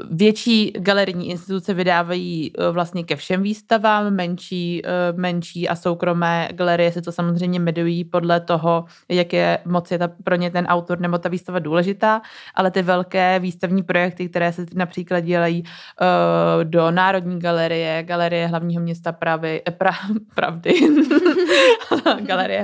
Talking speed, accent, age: 135 wpm, native, 20-39